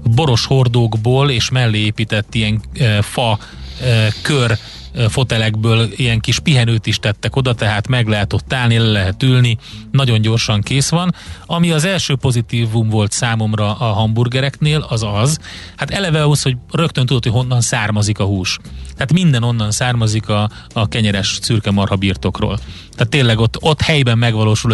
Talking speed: 155 wpm